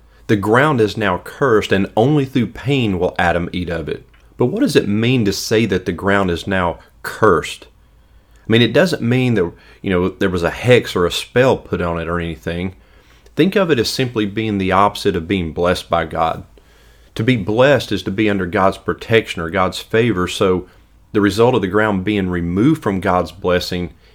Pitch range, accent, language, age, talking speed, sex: 90-110 Hz, American, English, 40-59, 205 wpm, male